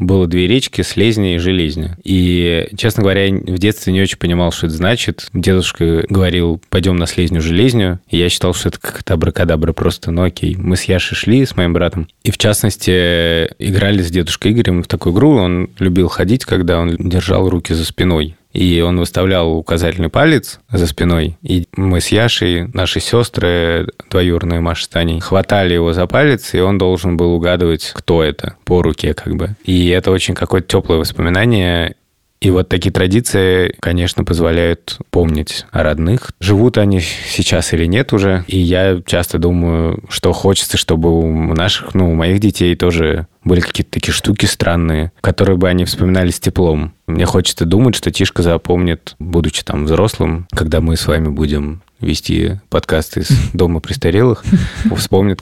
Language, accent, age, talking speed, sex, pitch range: Russian, native, 20-39, 170 wpm, male, 85-95 Hz